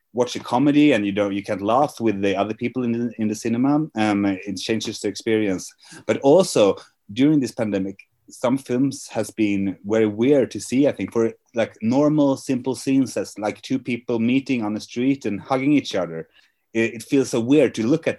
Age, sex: 30-49, male